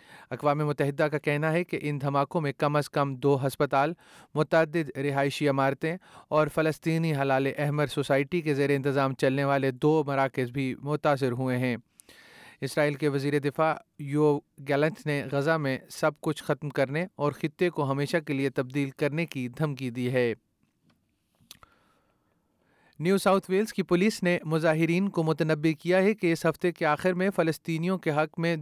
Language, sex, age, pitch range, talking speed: Urdu, male, 30-49, 140-165 Hz, 165 wpm